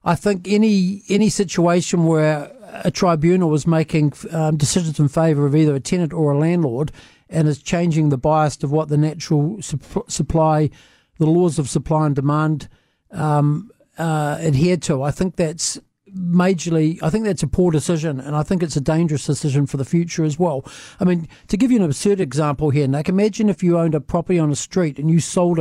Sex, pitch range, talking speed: male, 145-170 Hz, 200 wpm